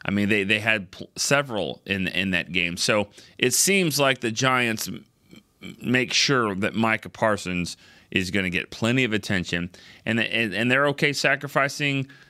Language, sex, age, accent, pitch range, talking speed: English, male, 30-49, American, 100-130 Hz, 165 wpm